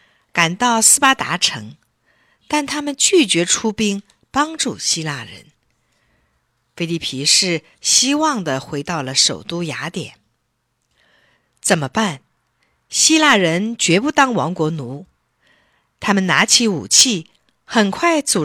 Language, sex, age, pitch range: Chinese, female, 50-69, 160-260 Hz